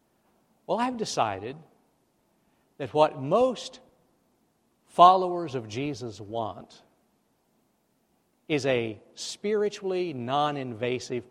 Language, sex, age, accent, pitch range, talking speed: English, male, 60-79, American, 125-175 Hz, 75 wpm